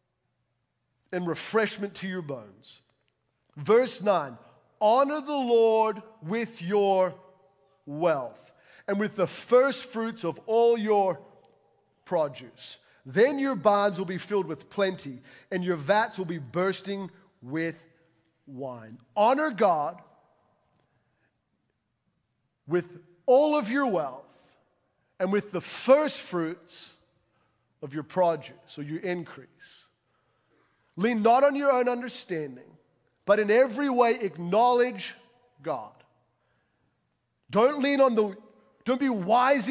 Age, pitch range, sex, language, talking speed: 40-59, 175-245 Hz, male, English, 115 wpm